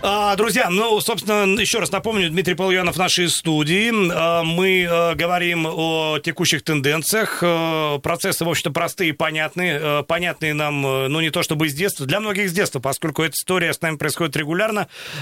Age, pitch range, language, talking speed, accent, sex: 40-59, 150-180 Hz, Russian, 160 wpm, native, male